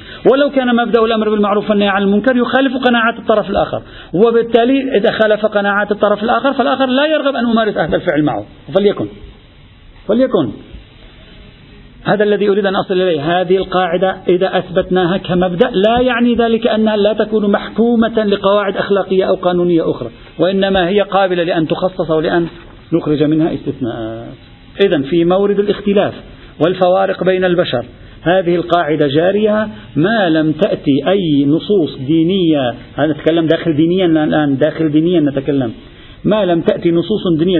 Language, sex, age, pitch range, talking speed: Arabic, male, 50-69, 165-215 Hz, 140 wpm